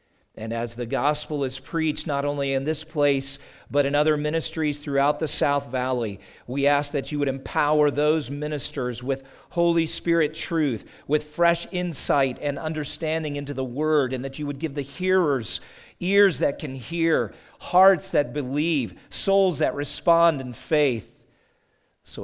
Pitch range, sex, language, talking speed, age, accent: 130-160 Hz, male, English, 160 wpm, 50-69, American